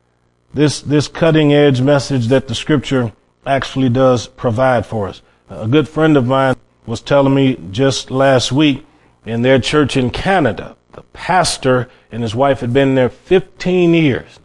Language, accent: English, American